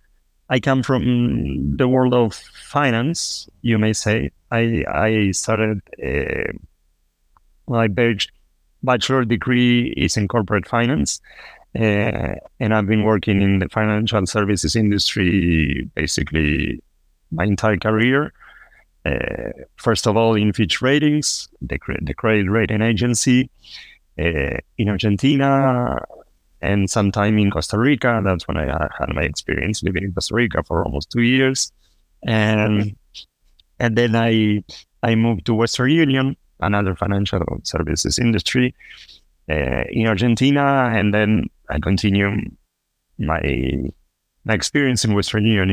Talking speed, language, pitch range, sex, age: 125 wpm, English, 85-115 Hz, male, 30-49